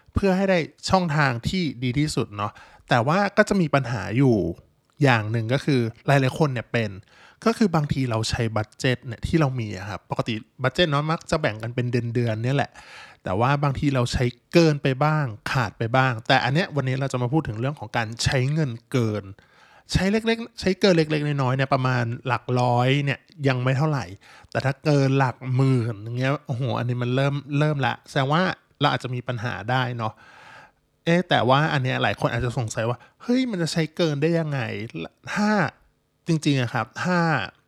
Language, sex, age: Thai, male, 20-39